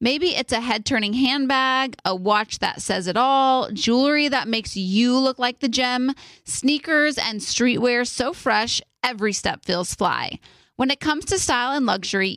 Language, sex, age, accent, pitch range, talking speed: English, female, 30-49, American, 215-280 Hz, 170 wpm